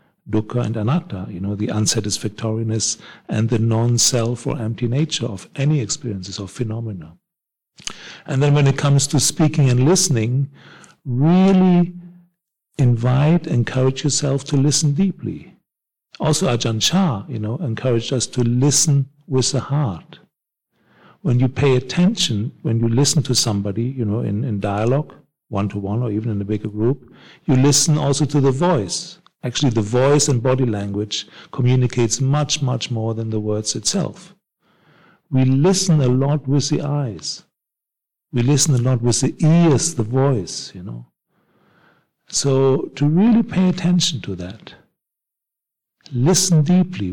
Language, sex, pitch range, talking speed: English, male, 115-150 Hz, 145 wpm